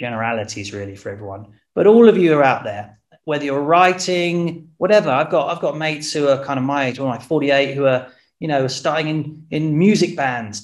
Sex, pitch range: male, 120-170 Hz